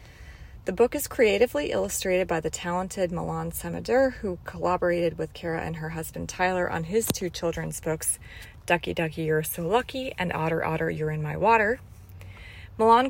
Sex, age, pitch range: female, 30-49, 160-210 Hz